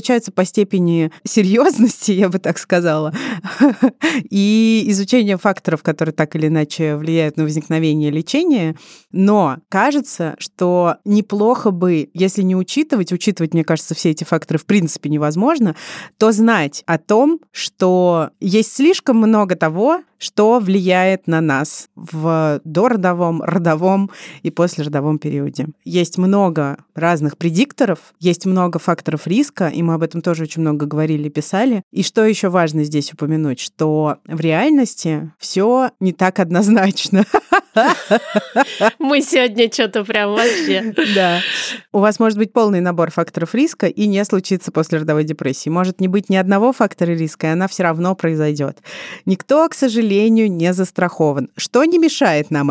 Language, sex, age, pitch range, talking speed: Russian, female, 30-49, 160-220 Hz, 140 wpm